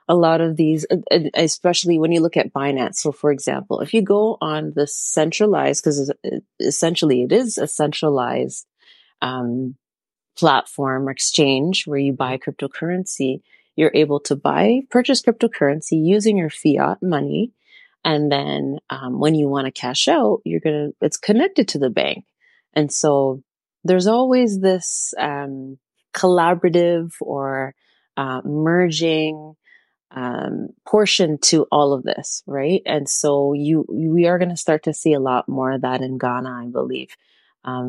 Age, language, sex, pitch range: 30-49, English, female, 135-175 Hz